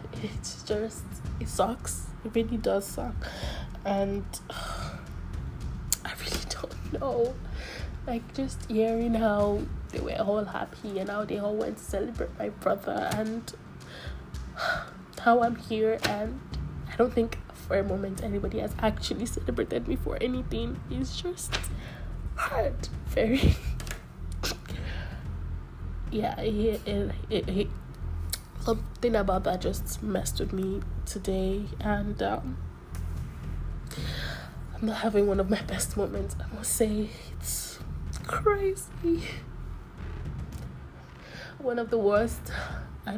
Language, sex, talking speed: English, female, 115 wpm